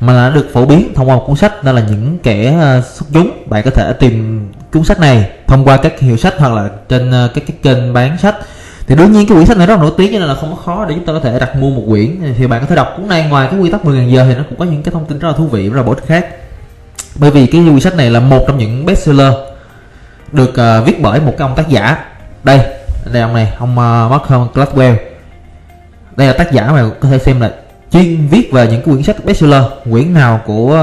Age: 20-39